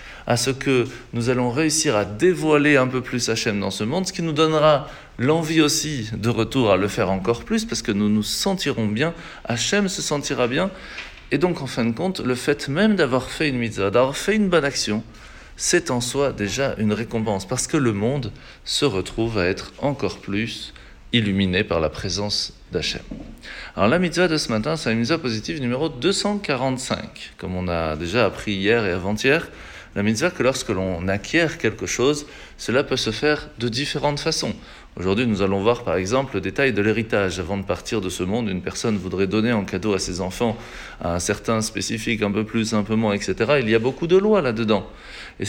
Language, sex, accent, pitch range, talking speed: French, male, French, 100-145 Hz, 205 wpm